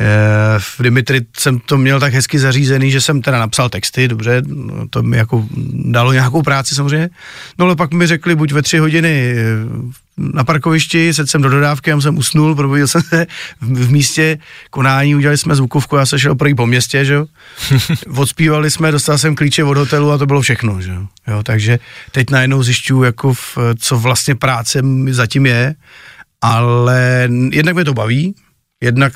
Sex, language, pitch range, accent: male, Czech, 120-145 Hz, native